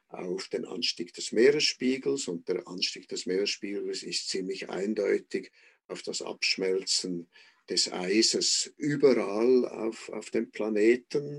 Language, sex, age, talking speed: German, male, 50-69, 120 wpm